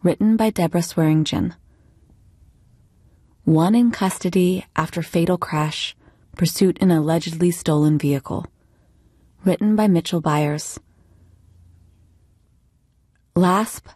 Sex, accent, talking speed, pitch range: female, American, 85 wpm, 145-185 Hz